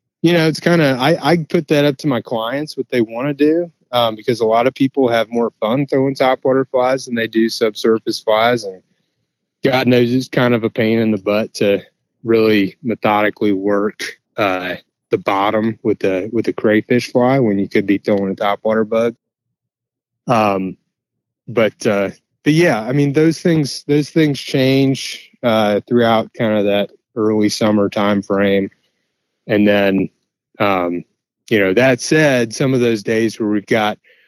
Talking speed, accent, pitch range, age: 180 wpm, American, 105-130 Hz, 30-49